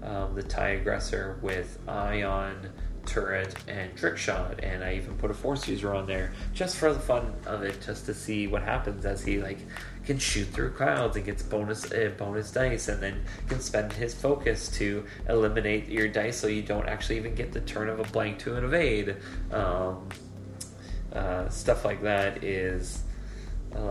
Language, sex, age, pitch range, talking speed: English, male, 20-39, 95-110 Hz, 185 wpm